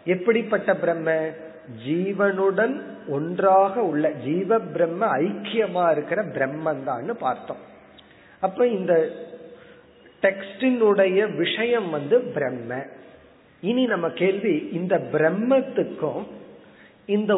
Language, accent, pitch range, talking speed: Tamil, native, 155-220 Hz, 60 wpm